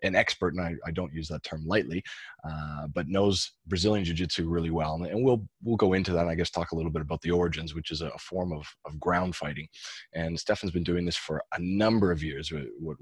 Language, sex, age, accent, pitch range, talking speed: English, male, 30-49, American, 80-90 Hz, 255 wpm